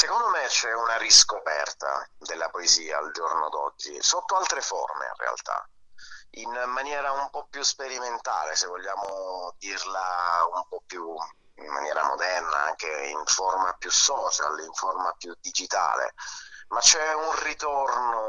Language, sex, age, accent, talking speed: Italian, male, 30-49, native, 140 wpm